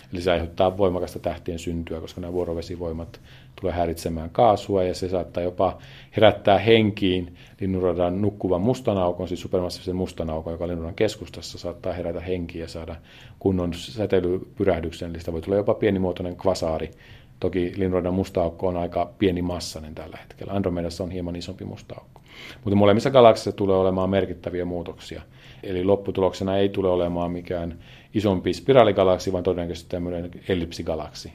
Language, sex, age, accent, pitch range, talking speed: Finnish, male, 40-59, native, 85-100 Hz, 145 wpm